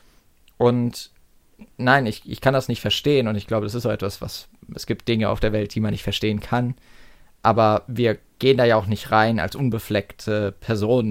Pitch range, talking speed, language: 105-120 Hz, 205 wpm, German